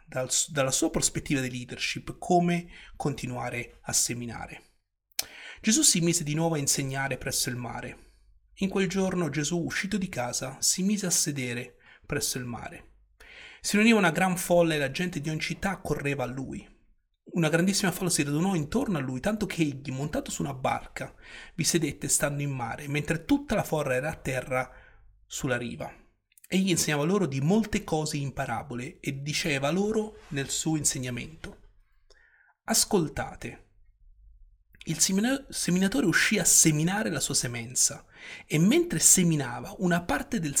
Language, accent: Italian, native